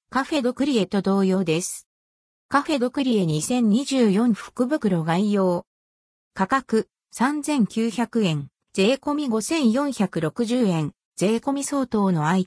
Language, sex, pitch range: Japanese, female, 175-255 Hz